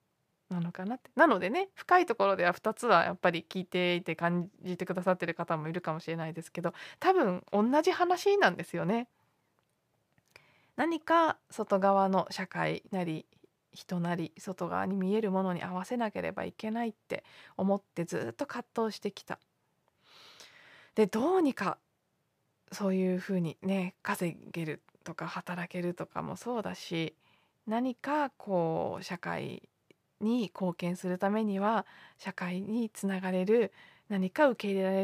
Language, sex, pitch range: Japanese, female, 175-230 Hz